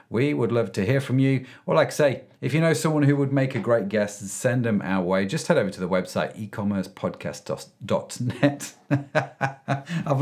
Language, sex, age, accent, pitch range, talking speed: English, male, 40-59, British, 120-165 Hz, 195 wpm